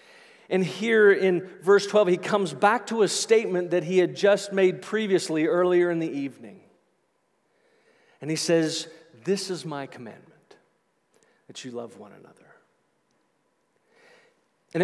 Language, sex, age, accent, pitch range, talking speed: English, male, 40-59, American, 180-215 Hz, 140 wpm